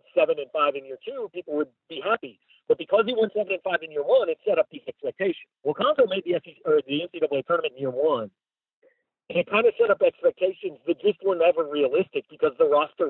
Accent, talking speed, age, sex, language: American, 225 wpm, 50-69, male, English